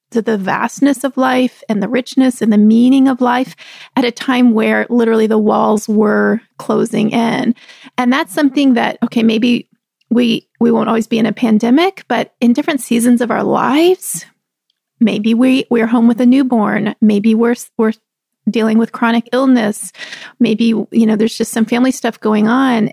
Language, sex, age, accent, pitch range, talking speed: English, female, 30-49, American, 220-260 Hz, 185 wpm